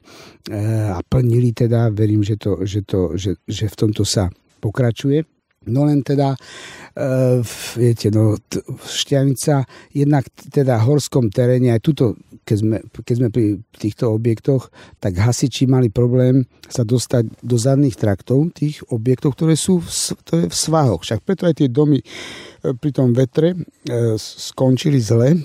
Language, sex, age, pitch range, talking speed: Slovak, male, 60-79, 110-140 Hz, 145 wpm